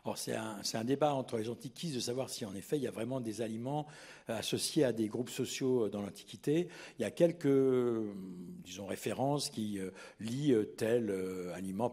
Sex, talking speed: male, 185 wpm